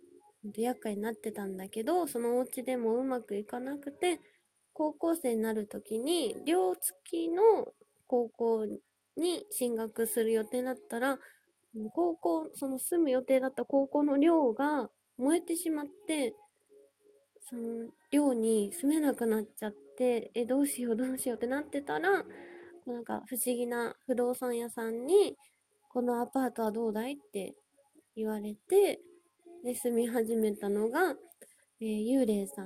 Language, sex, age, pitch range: Japanese, female, 20-39, 225-340 Hz